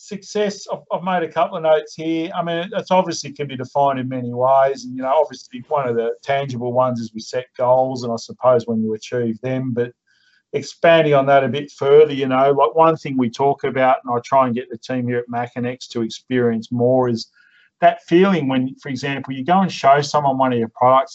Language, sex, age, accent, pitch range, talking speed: English, male, 40-59, Australian, 125-155 Hz, 230 wpm